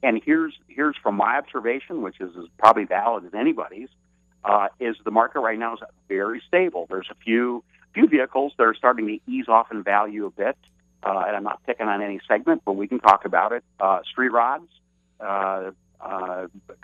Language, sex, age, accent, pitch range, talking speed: English, male, 50-69, American, 95-110 Hz, 200 wpm